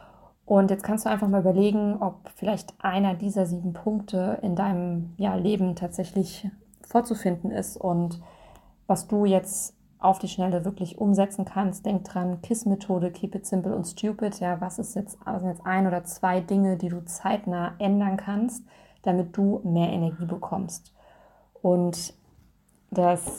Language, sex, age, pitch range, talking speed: German, female, 20-39, 175-200 Hz, 155 wpm